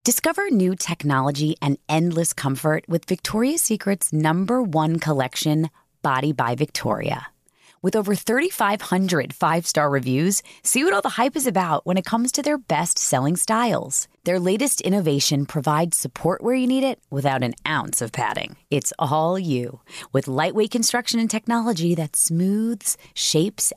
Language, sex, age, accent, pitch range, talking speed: English, female, 30-49, American, 155-235 Hz, 150 wpm